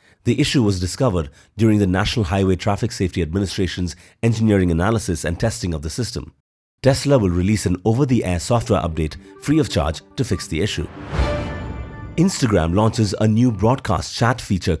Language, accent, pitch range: English, Indian, 95-115 Hz